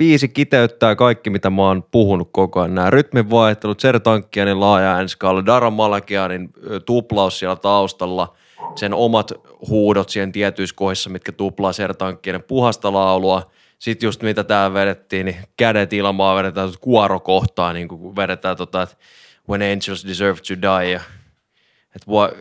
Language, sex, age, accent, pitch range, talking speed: Finnish, male, 20-39, native, 95-110 Hz, 140 wpm